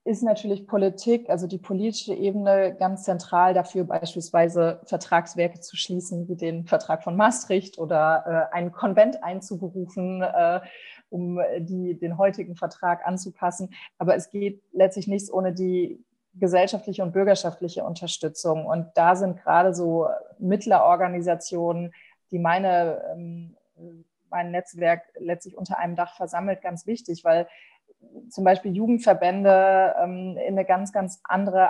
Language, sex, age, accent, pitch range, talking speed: German, female, 30-49, German, 175-195 Hz, 130 wpm